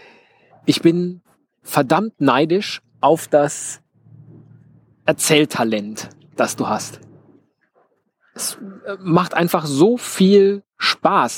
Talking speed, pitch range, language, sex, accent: 85 wpm, 145-200 Hz, German, male, German